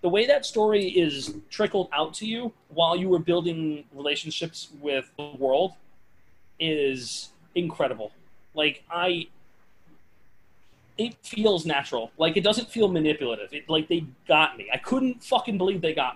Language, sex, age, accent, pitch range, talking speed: English, male, 30-49, American, 135-180 Hz, 150 wpm